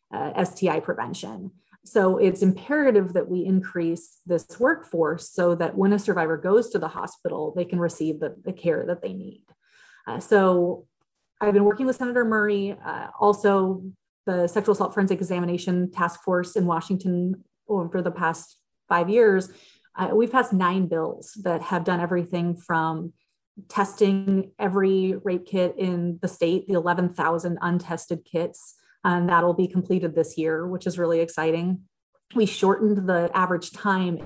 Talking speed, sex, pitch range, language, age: 155 wpm, female, 170-200 Hz, English, 30-49